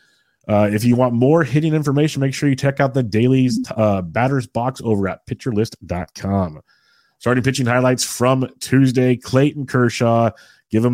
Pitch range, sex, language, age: 95-125 Hz, male, English, 30-49